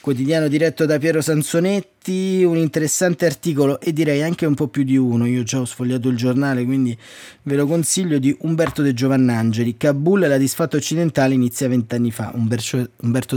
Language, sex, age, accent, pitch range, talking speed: Italian, male, 20-39, native, 125-155 Hz, 180 wpm